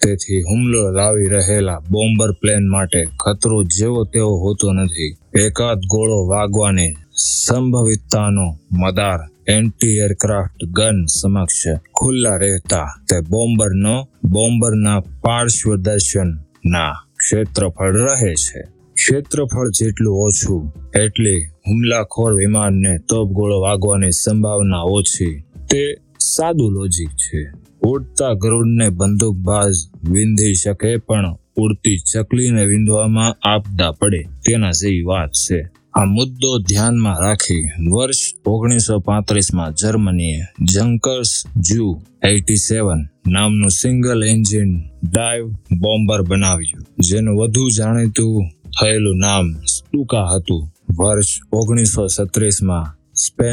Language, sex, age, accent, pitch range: Hindi, male, 20-39, native, 90-110 Hz